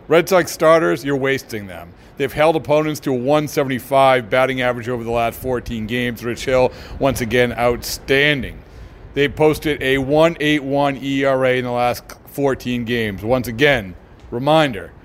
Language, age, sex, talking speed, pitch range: English, 40-59, male, 150 wpm, 115-140 Hz